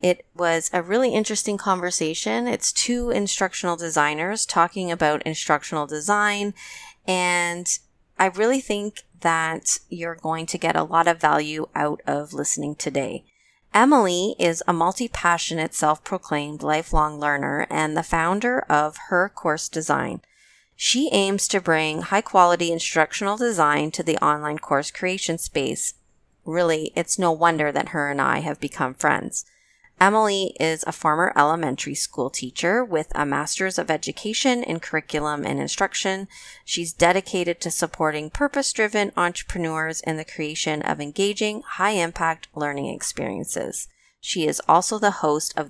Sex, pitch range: female, 155-195 Hz